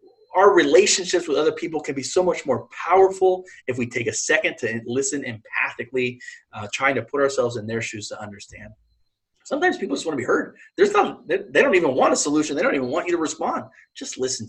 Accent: American